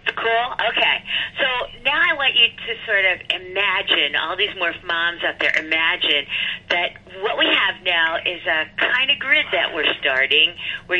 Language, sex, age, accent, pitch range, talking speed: English, female, 50-69, American, 195-250 Hz, 175 wpm